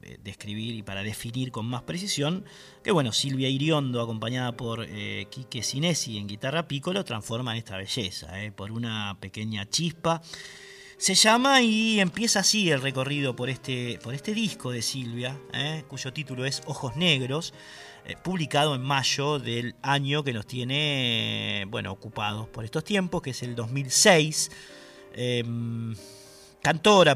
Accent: Argentinian